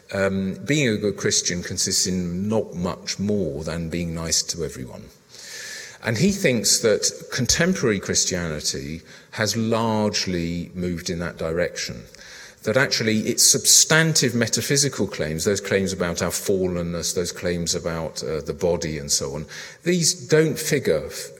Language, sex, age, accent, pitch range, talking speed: English, male, 40-59, British, 85-120 Hz, 140 wpm